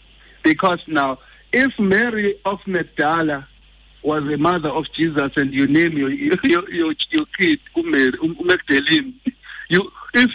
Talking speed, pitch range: 135 wpm, 165-250 Hz